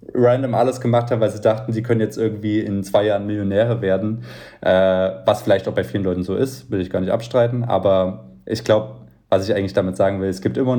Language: German